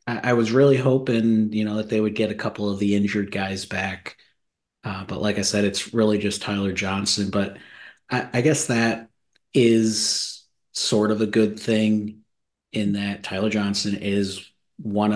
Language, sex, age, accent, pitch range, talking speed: English, male, 30-49, American, 95-105 Hz, 175 wpm